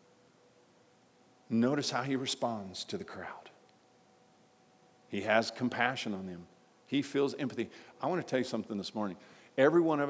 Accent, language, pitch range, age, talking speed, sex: American, English, 110-140 Hz, 50-69, 155 wpm, male